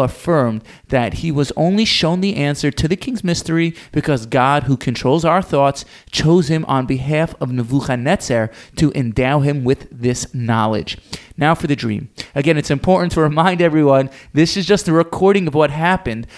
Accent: American